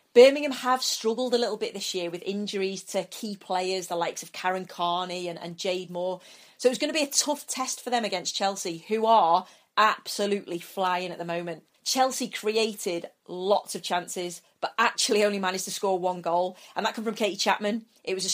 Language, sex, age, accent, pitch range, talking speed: English, female, 30-49, British, 180-220 Hz, 210 wpm